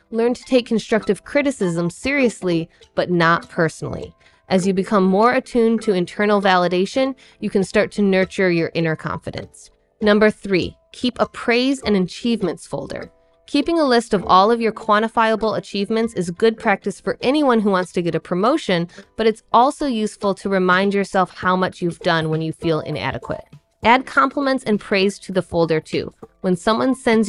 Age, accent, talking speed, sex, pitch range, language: 20-39, American, 175 wpm, female, 170-220 Hz, English